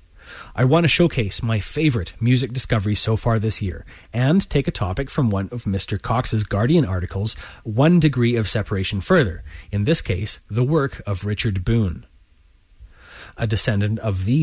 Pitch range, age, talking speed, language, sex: 95-125 Hz, 30-49, 165 wpm, English, male